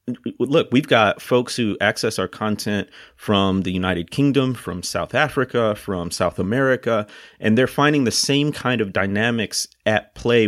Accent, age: American, 30-49